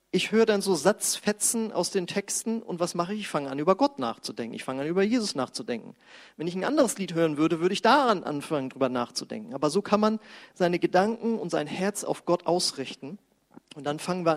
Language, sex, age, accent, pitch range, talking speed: German, male, 40-59, German, 155-220 Hz, 220 wpm